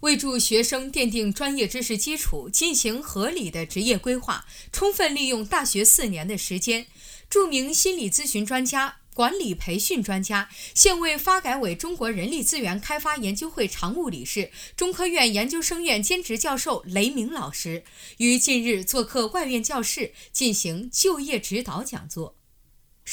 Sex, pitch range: female, 200-285 Hz